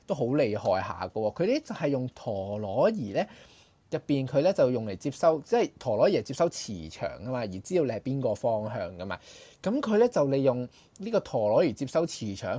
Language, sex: Chinese, male